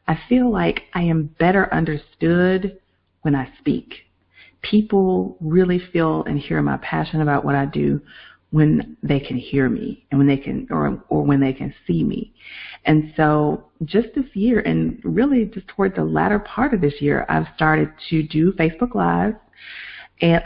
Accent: American